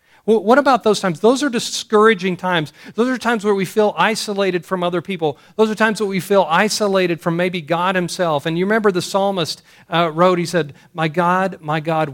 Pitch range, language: 145-195 Hz, English